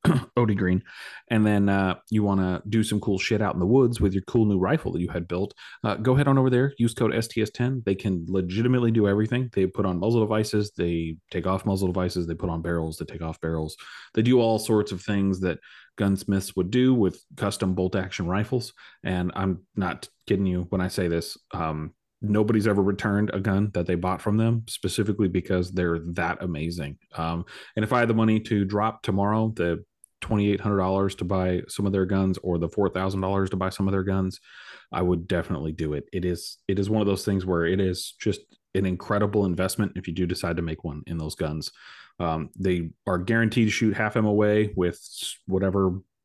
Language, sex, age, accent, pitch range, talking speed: English, male, 30-49, American, 90-105 Hz, 215 wpm